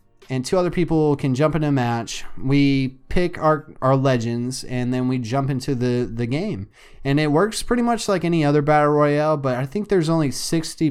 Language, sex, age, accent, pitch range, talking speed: English, male, 20-39, American, 130-155 Hz, 210 wpm